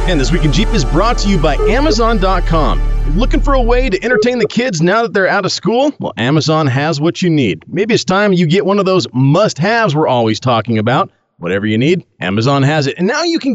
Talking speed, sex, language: 240 wpm, male, English